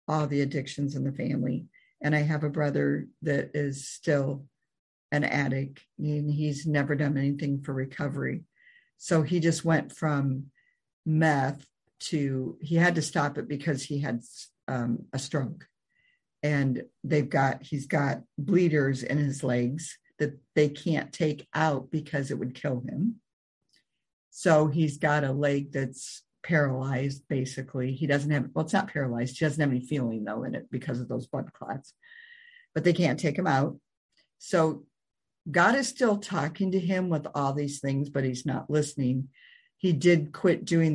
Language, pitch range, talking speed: English, 135-160 Hz, 165 wpm